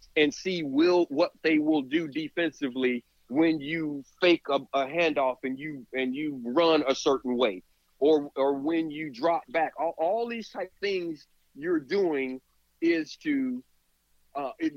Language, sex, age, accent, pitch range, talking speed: English, male, 40-59, American, 135-180 Hz, 160 wpm